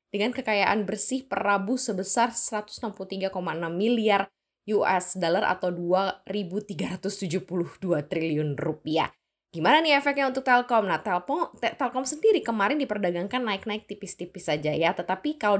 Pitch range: 175-230 Hz